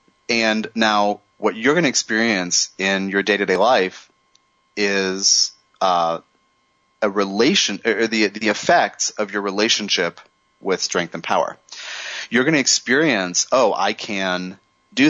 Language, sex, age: English, male, 30-49